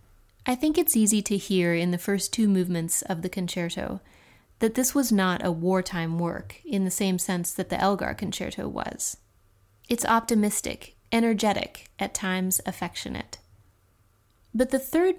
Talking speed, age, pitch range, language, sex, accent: 155 wpm, 30-49, 170-220 Hz, English, female, American